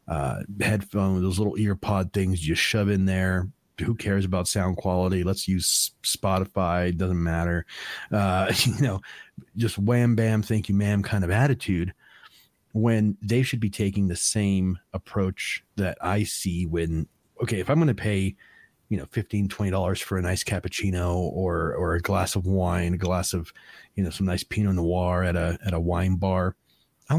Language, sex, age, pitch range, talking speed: English, male, 30-49, 95-115 Hz, 180 wpm